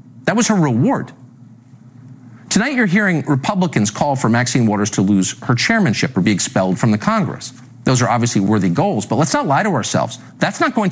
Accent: American